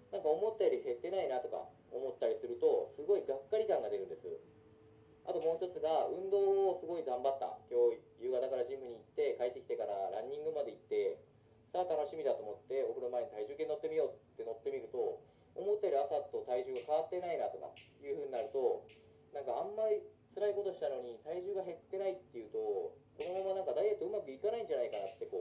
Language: Japanese